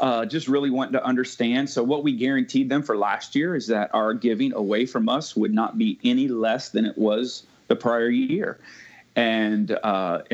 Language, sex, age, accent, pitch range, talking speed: English, male, 30-49, American, 115-145 Hz, 195 wpm